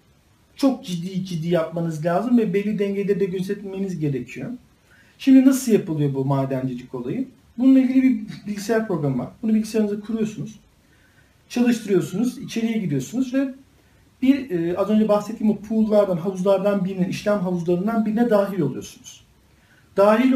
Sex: male